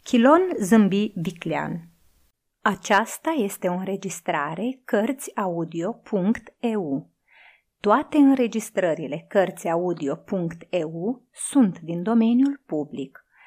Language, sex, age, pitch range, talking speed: Romanian, female, 30-49, 170-255 Hz, 65 wpm